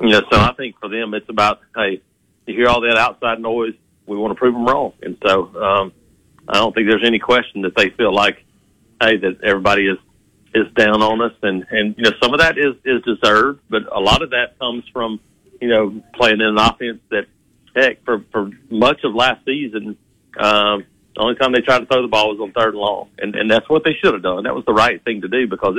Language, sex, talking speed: English, male, 245 wpm